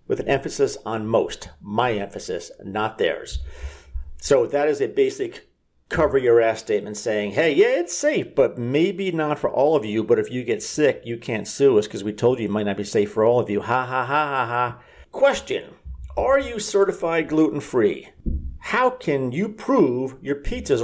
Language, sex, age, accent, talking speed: English, male, 50-69, American, 195 wpm